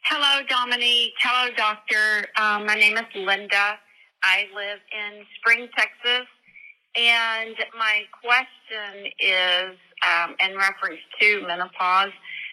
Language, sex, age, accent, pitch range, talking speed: English, female, 40-59, American, 180-225 Hz, 110 wpm